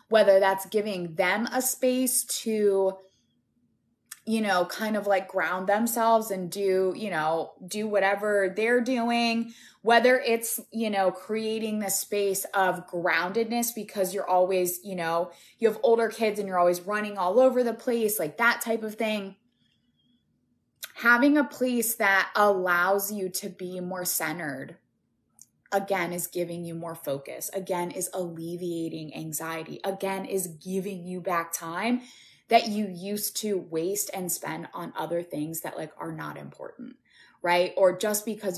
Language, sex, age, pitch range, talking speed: English, female, 20-39, 180-230 Hz, 150 wpm